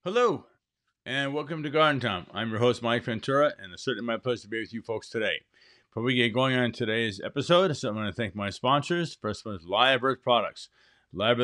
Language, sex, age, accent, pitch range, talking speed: English, male, 50-69, American, 115-140 Hz, 225 wpm